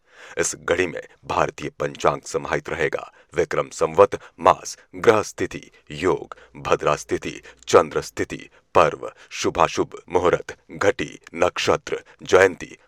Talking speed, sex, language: 105 wpm, male, Hindi